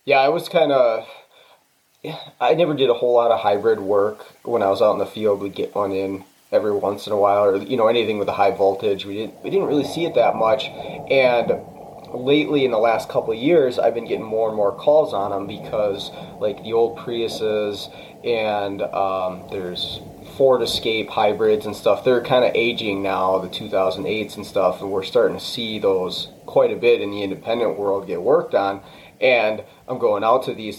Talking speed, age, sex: 210 wpm, 30-49, male